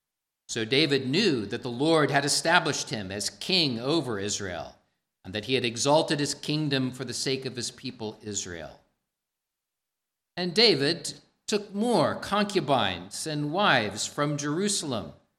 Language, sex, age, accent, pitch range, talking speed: English, male, 50-69, American, 110-150 Hz, 140 wpm